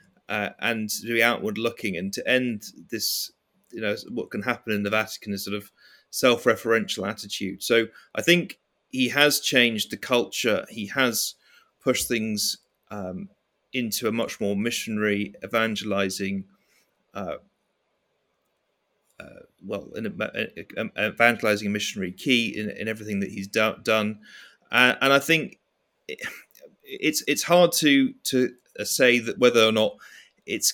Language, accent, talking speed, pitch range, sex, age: English, British, 145 wpm, 100-125 Hz, male, 30-49